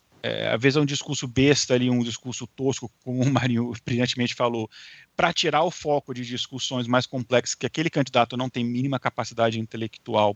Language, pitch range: Portuguese, 115-145 Hz